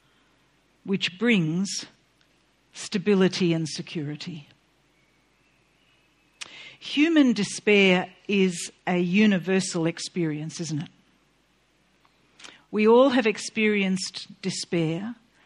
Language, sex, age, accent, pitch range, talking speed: English, female, 50-69, Australian, 180-225 Hz, 70 wpm